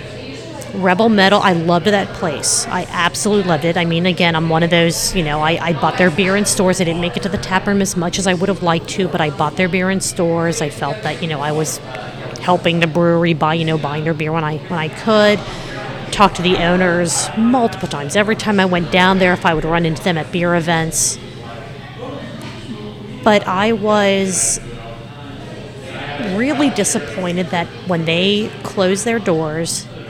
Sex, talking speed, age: female, 200 wpm, 30-49